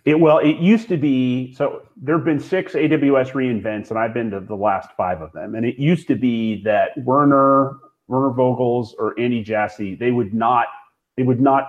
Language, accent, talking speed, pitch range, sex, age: English, American, 205 wpm, 110-150 Hz, male, 30-49